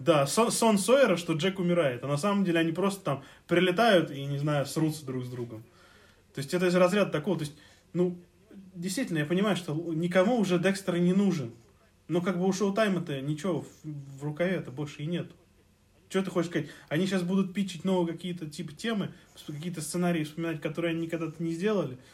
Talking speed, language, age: 200 wpm, Russian, 20-39